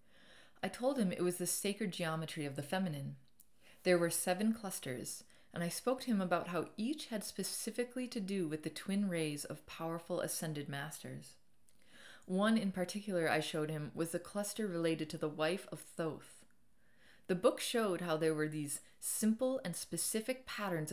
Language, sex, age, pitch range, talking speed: English, female, 30-49, 160-205 Hz, 175 wpm